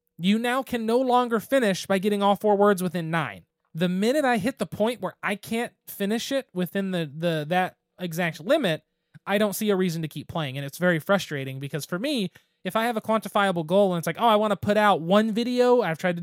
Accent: American